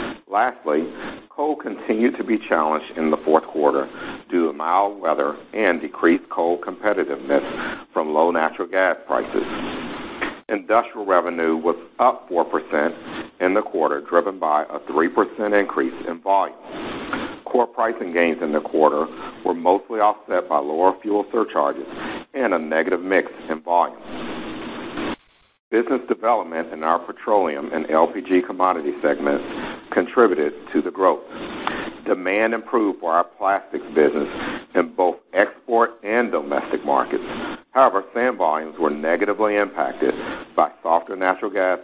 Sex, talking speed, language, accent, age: male, 130 wpm, English, American, 60-79